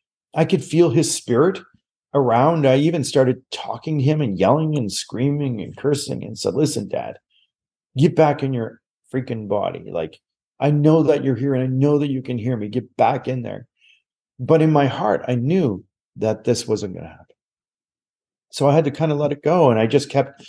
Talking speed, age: 210 wpm, 40-59